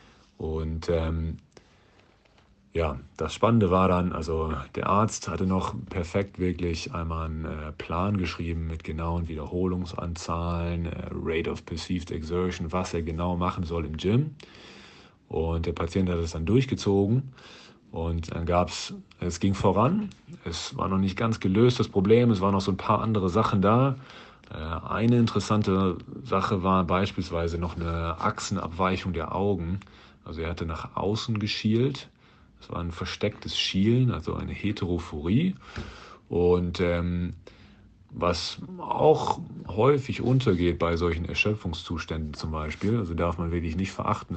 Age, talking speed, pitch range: 40-59, 145 wpm, 85-105 Hz